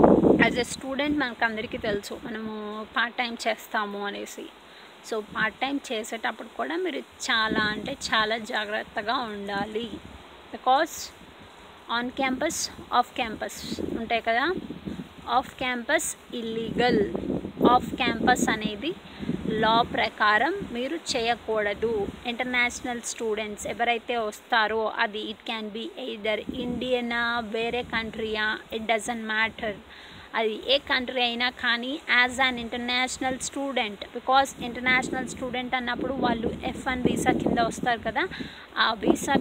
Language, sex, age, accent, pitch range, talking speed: Telugu, female, 20-39, native, 225-255 Hz, 115 wpm